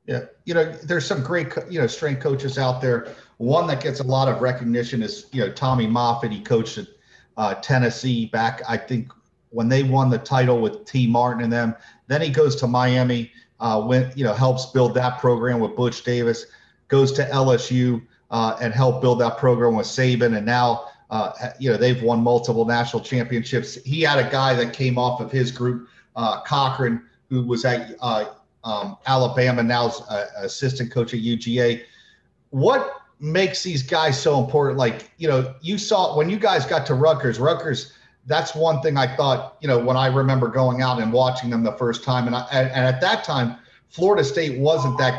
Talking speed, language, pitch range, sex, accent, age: 195 wpm, English, 120-140 Hz, male, American, 40-59